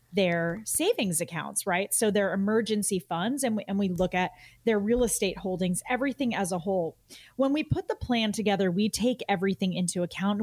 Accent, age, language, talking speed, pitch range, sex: American, 30-49, English, 185 wpm, 180-230 Hz, female